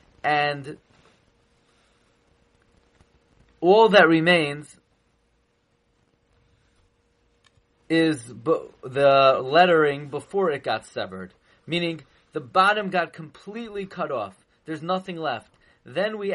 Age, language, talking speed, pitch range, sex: 30-49, English, 85 wpm, 145-175 Hz, male